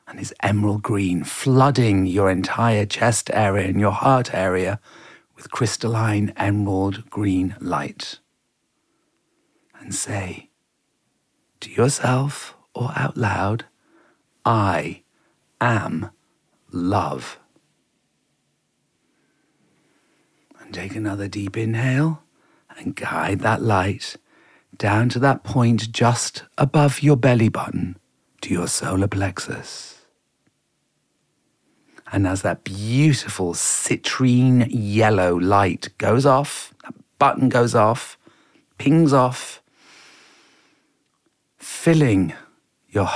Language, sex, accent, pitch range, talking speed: English, male, British, 100-125 Hz, 90 wpm